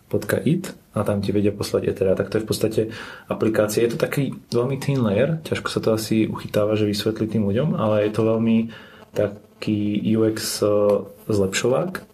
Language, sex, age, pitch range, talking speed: Slovak, male, 30-49, 100-115 Hz, 175 wpm